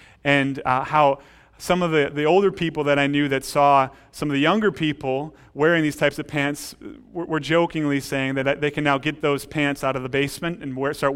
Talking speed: 220 wpm